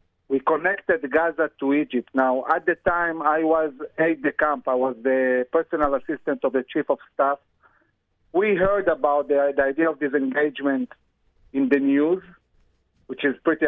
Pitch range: 130-175 Hz